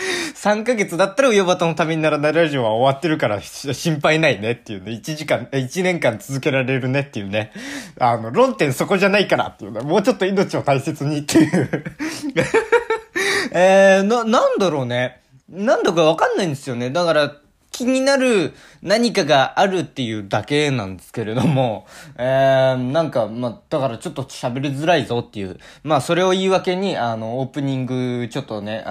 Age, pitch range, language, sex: 20-39, 120-185 Hz, Japanese, male